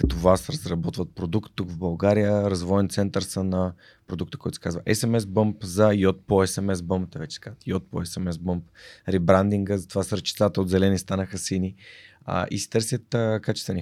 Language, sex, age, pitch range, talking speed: Bulgarian, male, 20-39, 90-110 Hz, 150 wpm